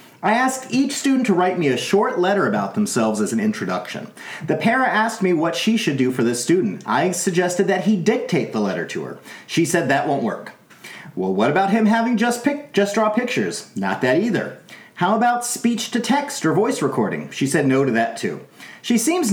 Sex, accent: male, American